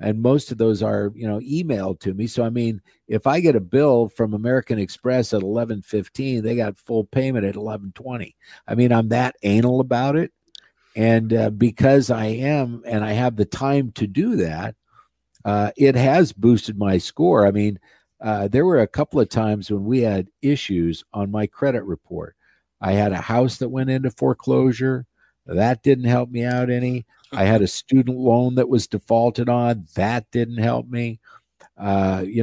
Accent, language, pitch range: American, English, 105-130 Hz